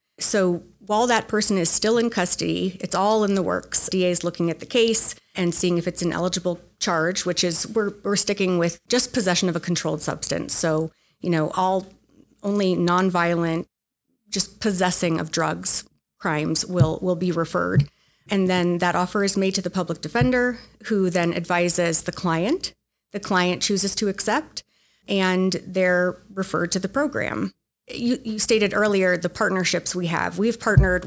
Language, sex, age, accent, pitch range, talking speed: English, female, 30-49, American, 175-205 Hz, 170 wpm